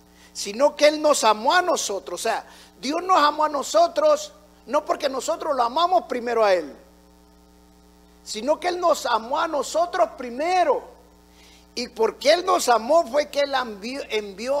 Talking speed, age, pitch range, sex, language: 165 wpm, 50-69, 195-320 Hz, male, Spanish